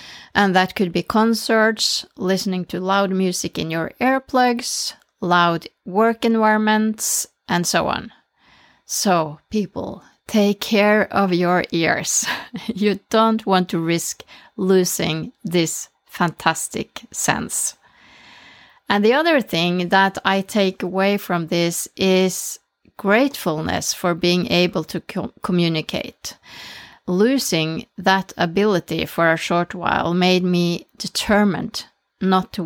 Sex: female